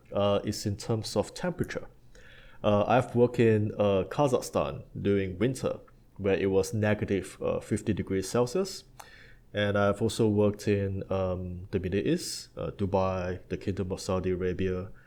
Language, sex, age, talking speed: English, male, 20-39, 150 wpm